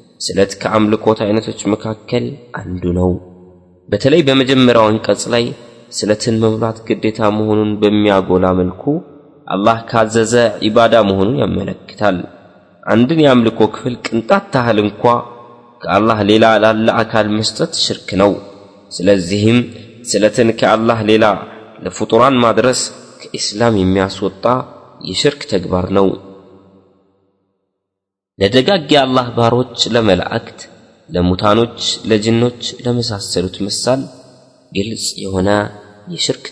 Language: Amharic